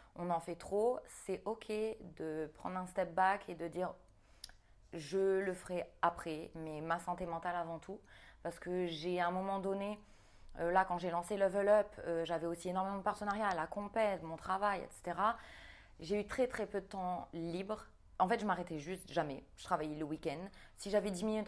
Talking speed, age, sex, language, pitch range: 195 wpm, 20-39, female, French, 165-200 Hz